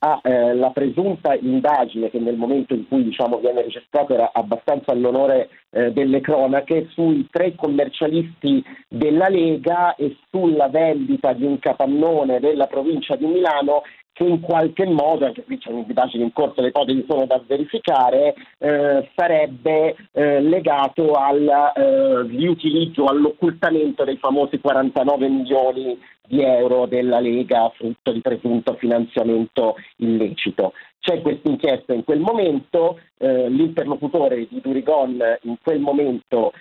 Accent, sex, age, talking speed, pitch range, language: native, male, 40-59, 135 wpm, 120-160 Hz, Italian